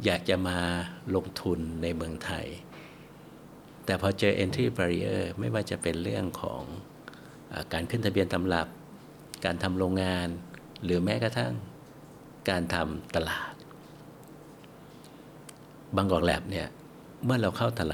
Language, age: Thai, 60-79